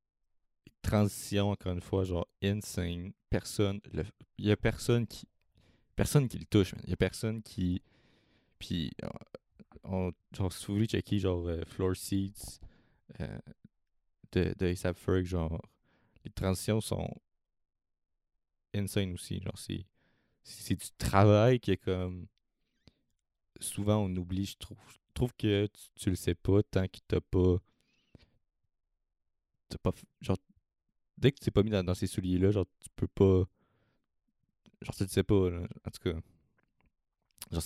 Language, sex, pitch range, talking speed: French, male, 85-105 Hz, 150 wpm